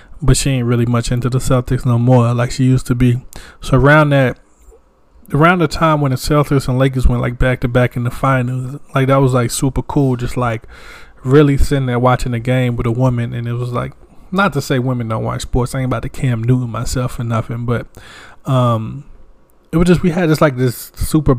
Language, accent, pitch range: English, American, 120-140 Hz